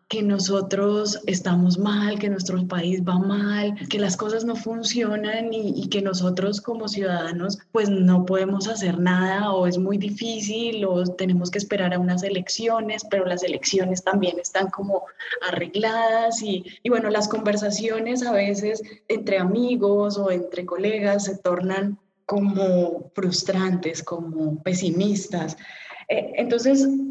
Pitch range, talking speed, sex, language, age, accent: 185-220 Hz, 135 wpm, female, English, 10-29, Colombian